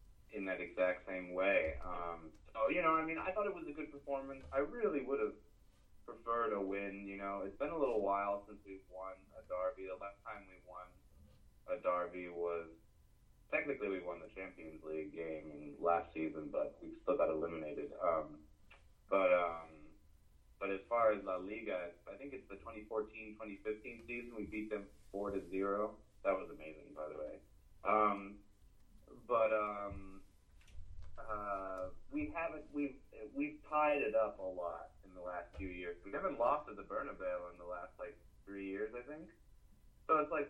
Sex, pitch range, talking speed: male, 90-115 Hz, 180 wpm